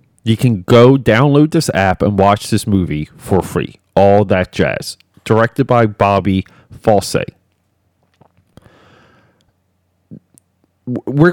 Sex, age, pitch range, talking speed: male, 30-49, 90-115 Hz, 105 wpm